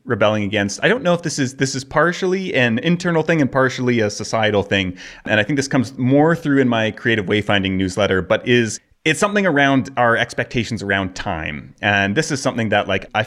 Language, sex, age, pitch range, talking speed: English, male, 30-49, 105-135 Hz, 215 wpm